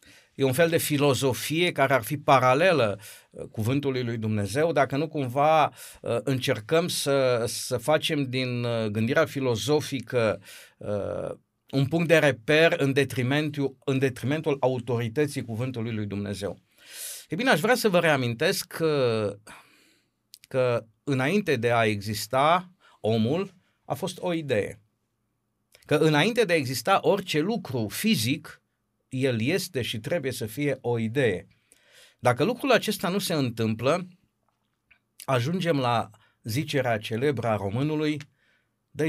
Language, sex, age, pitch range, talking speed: Romanian, male, 50-69, 115-155 Hz, 120 wpm